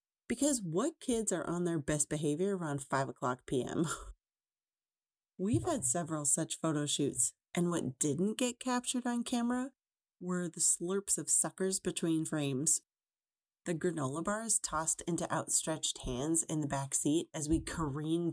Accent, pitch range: American, 155-205 Hz